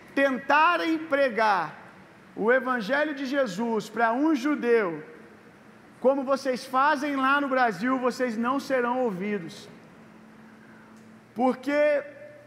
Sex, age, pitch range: male, 40-59, 215-275 Hz